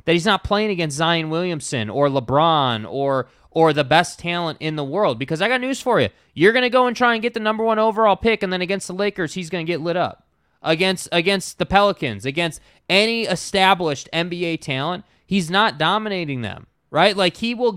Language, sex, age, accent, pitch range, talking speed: English, male, 20-39, American, 160-200 Hz, 215 wpm